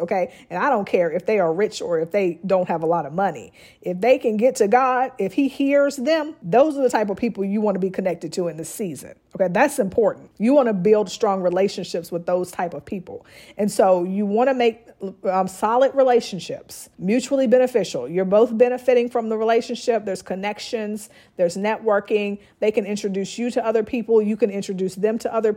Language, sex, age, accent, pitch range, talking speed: English, female, 40-59, American, 190-235 Hz, 215 wpm